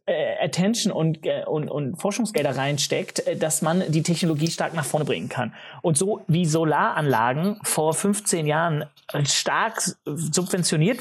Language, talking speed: German, 130 wpm